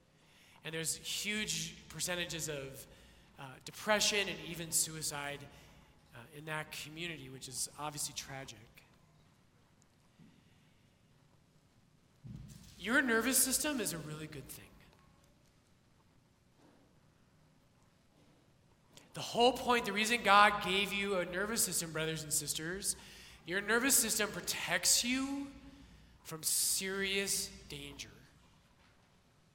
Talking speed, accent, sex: 95 wpm, American, male